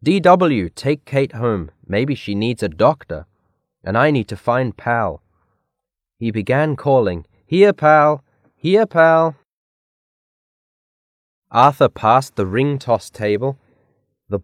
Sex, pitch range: male, 100-135 Hz